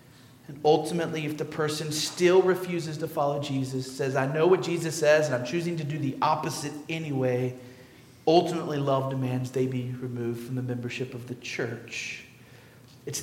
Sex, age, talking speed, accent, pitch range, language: male, 40-59, 170 wpm, American, 120-160 Hz, English